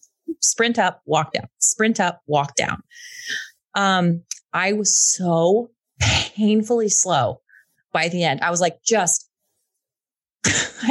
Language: English